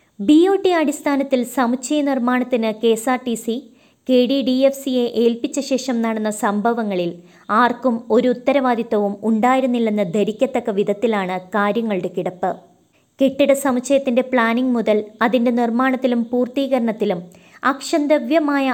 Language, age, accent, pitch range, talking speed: Malayalam, 20-39, native, 215-260 Hz, 110 wpm